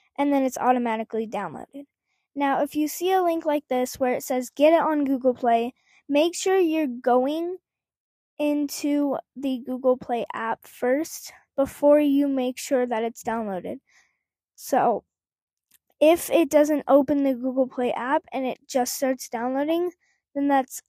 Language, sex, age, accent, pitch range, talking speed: English, female, 10-29, American, 255-300 Hz, 155 wpm